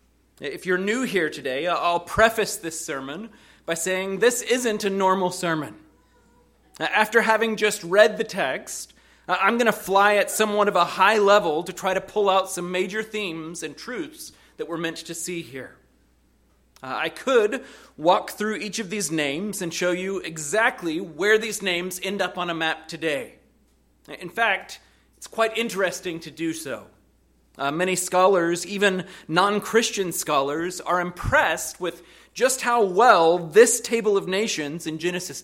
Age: 30-49